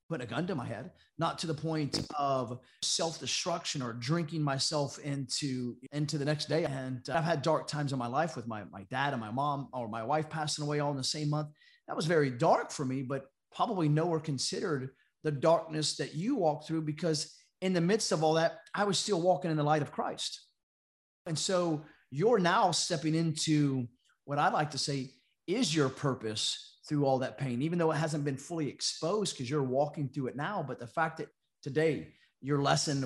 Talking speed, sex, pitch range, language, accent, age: 210 wpm, male, 135-165 Hz, English, American, 30-49